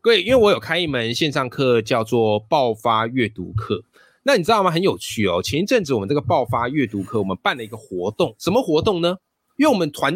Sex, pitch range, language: male, 110-160 Hz, Chinese